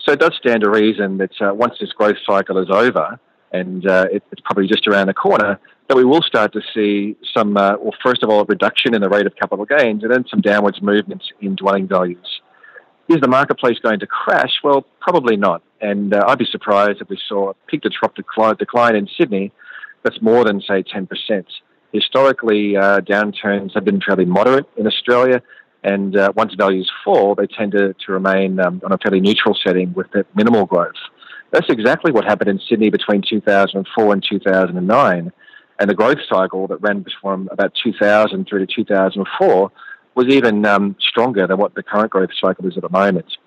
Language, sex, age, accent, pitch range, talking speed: English, male, 40-59, Australian, 95-105 Hz, 195 wpm